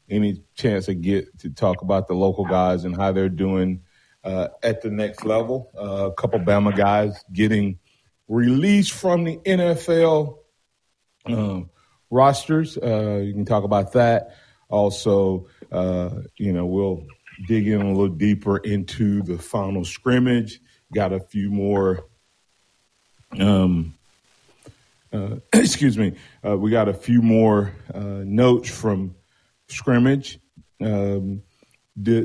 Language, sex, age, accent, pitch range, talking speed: English, male, 40-59, American, 100-125 Hz, 135 wpm